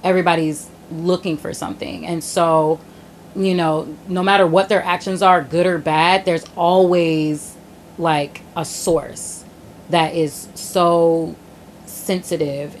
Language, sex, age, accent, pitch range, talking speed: English, female, 30-49, American, 155-175 Hz, 120 wpm